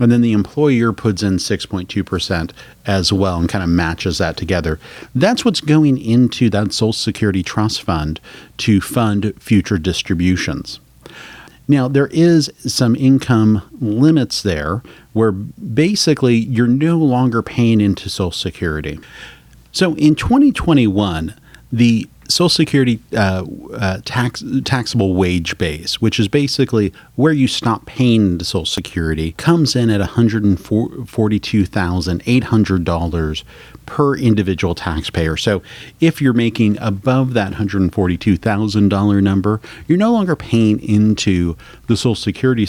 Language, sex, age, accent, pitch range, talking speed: English, male, 40-59, American, 95-125 Hz, 125 wpm